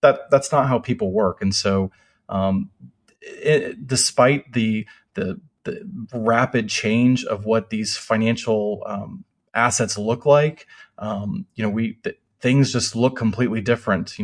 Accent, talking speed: American, 150 wpm